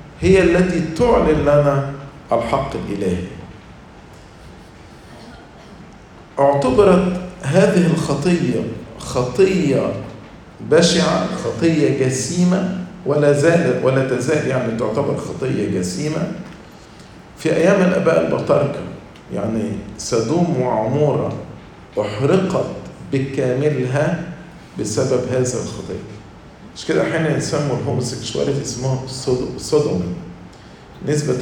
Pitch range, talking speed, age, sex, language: 125-170 Hz, 80 wpm, 50-69, male, English